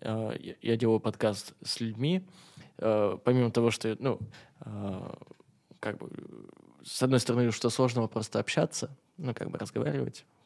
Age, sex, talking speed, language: 20-39, male, 125 wpm, Russian